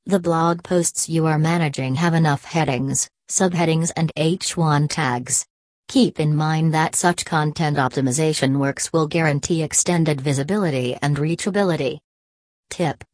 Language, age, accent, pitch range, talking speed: English, 40-59, American, 145-175 Hz, 130 wpm